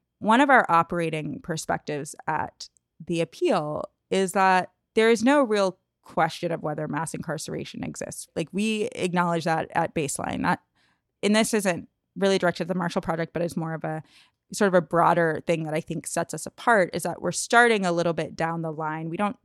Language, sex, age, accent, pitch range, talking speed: English, female, 20-39, American, 160-195 Hz, 195 wpm